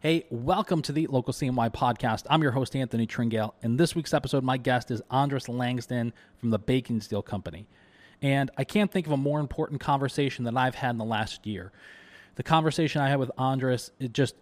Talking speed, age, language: 210 wpm, 20-39, English